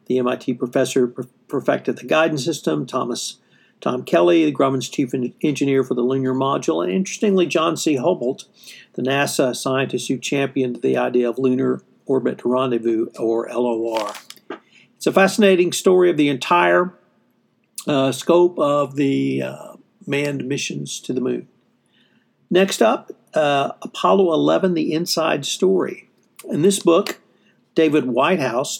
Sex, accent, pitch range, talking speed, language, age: male, American, 125-155 Hz, 140 wpm, English, 50-69